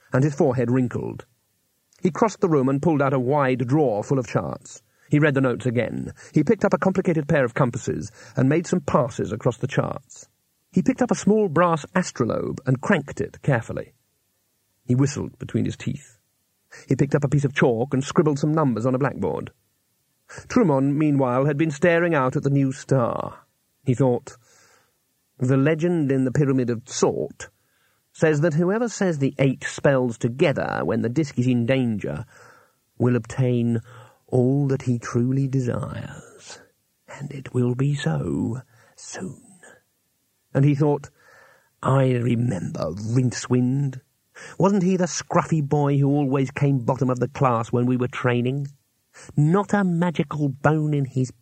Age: 40-59